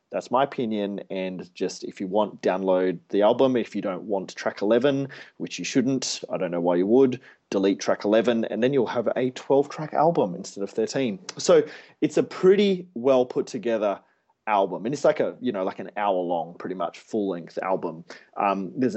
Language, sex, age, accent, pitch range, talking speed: English, male, 20-39, Australian, 100-135 Hz, 200 wpm